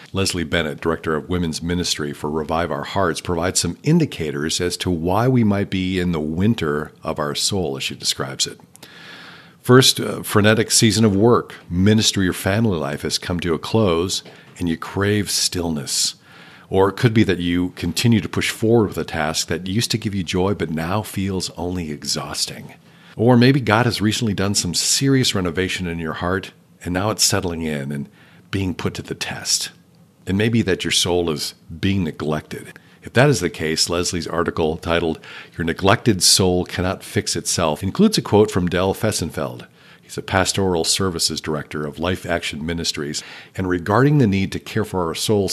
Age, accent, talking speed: 50-69, American, 185 wpm